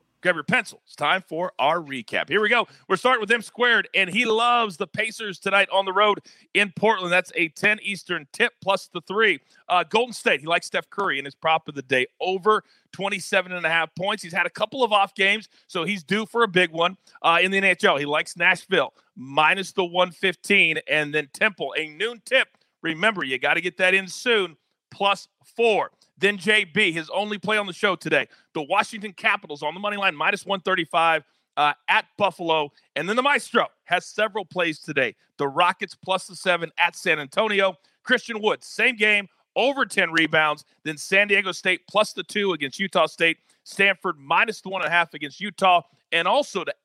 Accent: American